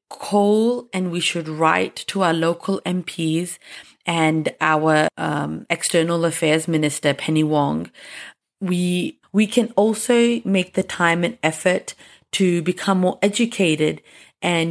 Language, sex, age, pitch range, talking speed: English, female, 30-49, 155-180 Hz, 125 wpm